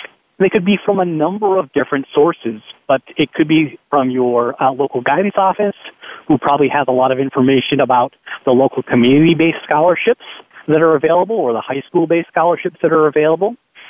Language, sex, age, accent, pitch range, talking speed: English, male, 40-59, American, 135-170 Hz, 180 wpm